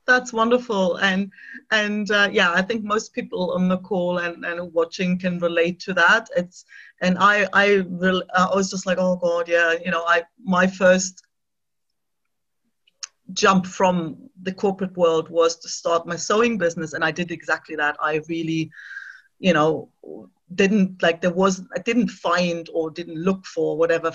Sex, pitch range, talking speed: female, 170-205 Hz, 170 wpm